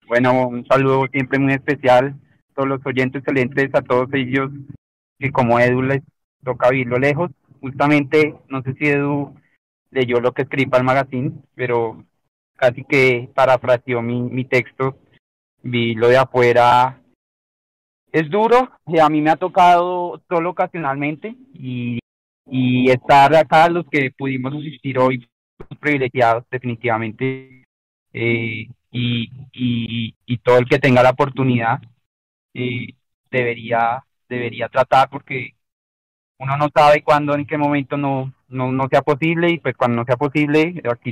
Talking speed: 145 wpm